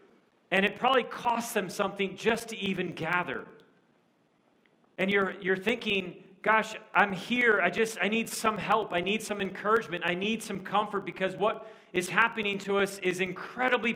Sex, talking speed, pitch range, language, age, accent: male, 170 wpm, 185-220 Hz, English, 40-59, American